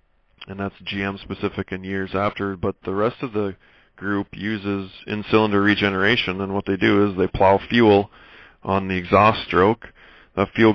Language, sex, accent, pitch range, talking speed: English, male, American, 95-105 Hz, 175 wpm